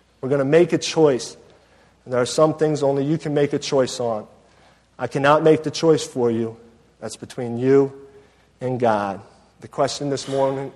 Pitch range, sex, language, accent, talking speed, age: 130-160 Hz, male, English, American, 190 wpm, 40-59